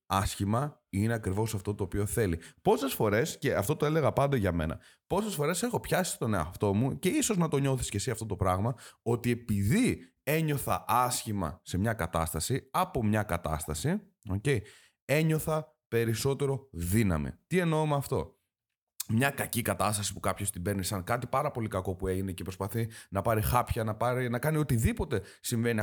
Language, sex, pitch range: Greek, male, 95-135 Hz